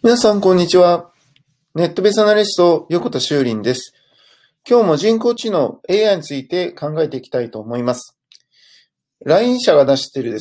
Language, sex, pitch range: Japanese, male, 130-205 Hz